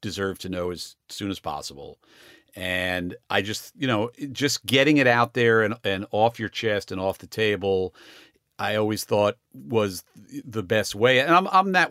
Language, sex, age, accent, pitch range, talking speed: English, male, 50-69, American, 95-120 Hz, 185 wpm